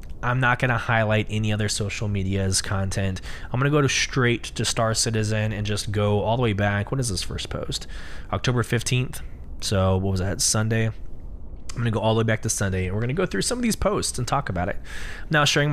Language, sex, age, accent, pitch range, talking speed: English, male, 20-39, American, 100-135 Hz, 245 wpm